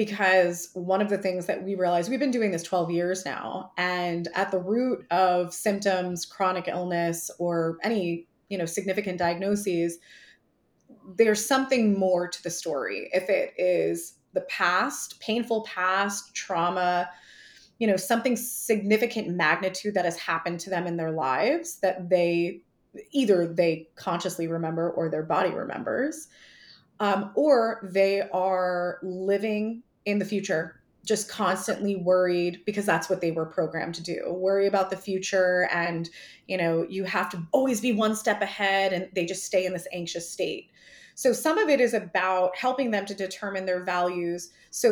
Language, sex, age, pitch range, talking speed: English, female, 20-39, 175-215 Hz, 160 wpm